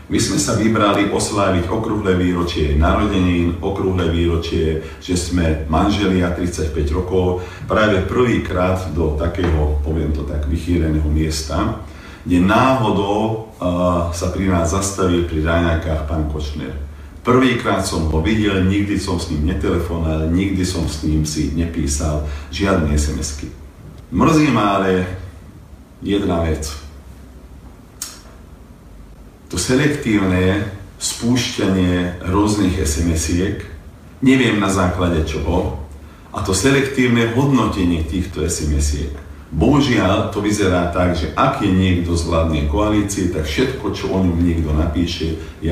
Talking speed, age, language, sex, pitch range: 120 wpm, 50-69, Slovak, male, 80-100 Hz